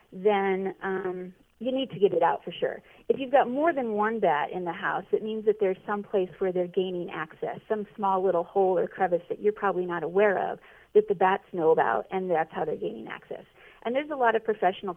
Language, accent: English, American